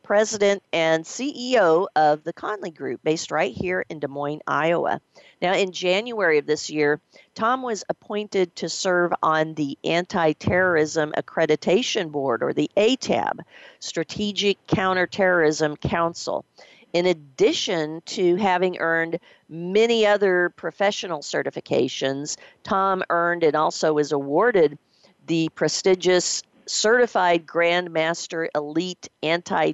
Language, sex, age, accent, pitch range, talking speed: English, female, 50-69, American, 155-190 Hz, 115 wpm